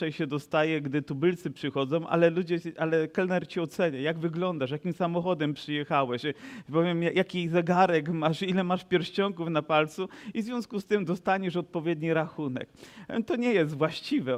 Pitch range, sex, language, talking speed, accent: 150-185 Hz, male, Polish, 155 wpm, native